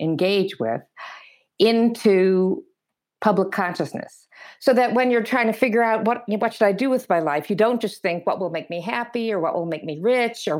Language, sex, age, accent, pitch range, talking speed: English, female, 50-69, American, 170-230 Hz, 210 wpm